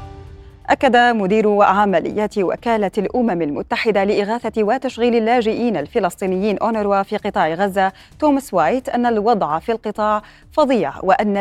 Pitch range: 185-230 Hz